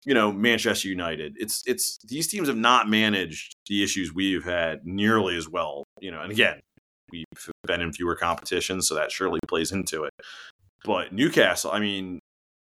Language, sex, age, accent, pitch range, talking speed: English, male, 30-49, American, 80-95 Hz, 175 wpm